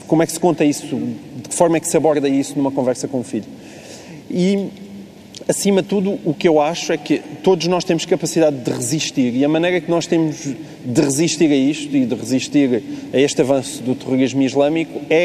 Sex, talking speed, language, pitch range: male, 215 wpm, Portuguese, 140-175 Hz